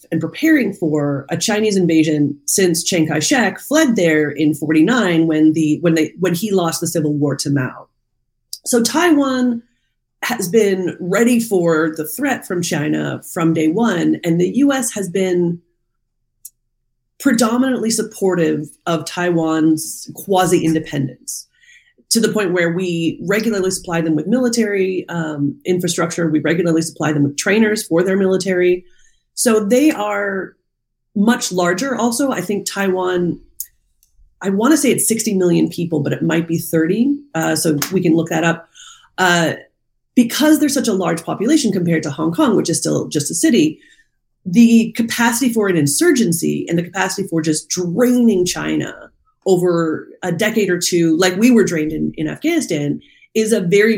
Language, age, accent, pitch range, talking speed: English, 30-49, American, 160-220 Hz, 160 wpm